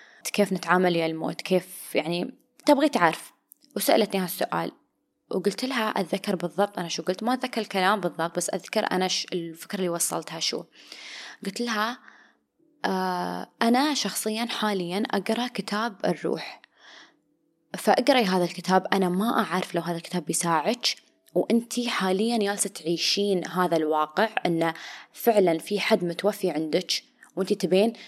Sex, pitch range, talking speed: female, 175-230 Hz, 130 wpm